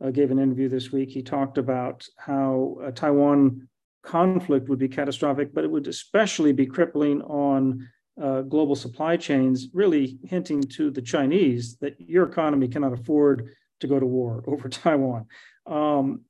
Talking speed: 160 wpm